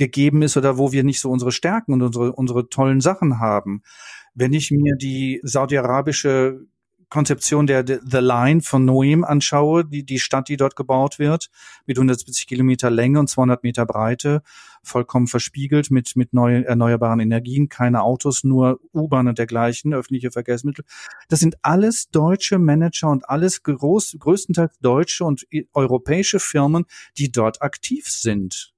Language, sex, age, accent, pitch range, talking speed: German, male, 40-59, German, 125-150 Hz, 155 wpm